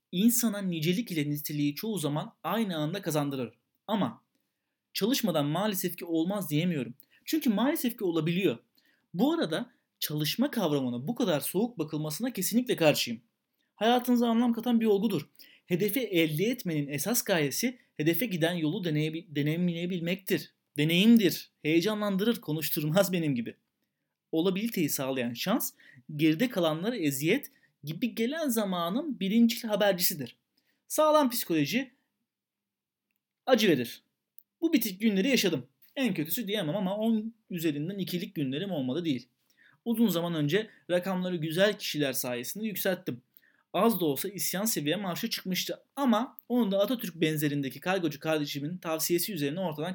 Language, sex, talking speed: Turkish, male, 125 wpm